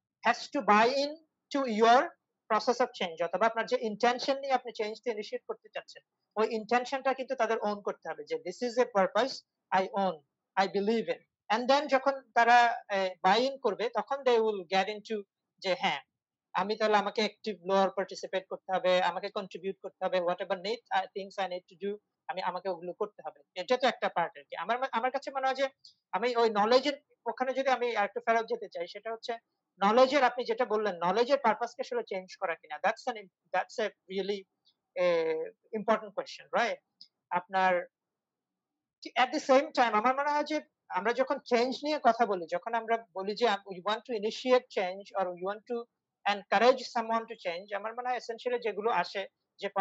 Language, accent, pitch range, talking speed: Bengali, native, 195-250 Hz, 95 wpm